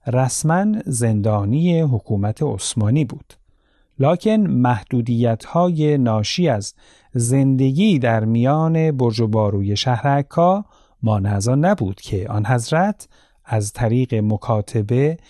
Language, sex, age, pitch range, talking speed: Persian, male, 40-59, 110-160 Hz, 100 wpm